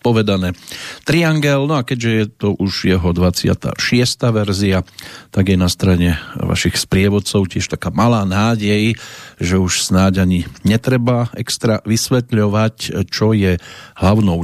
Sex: male